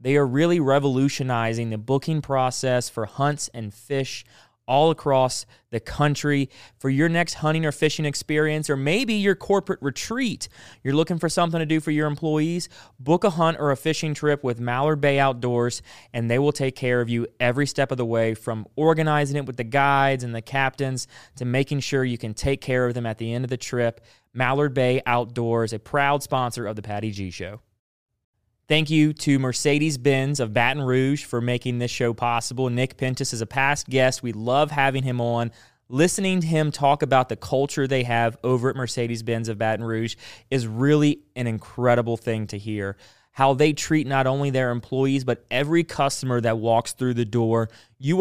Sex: male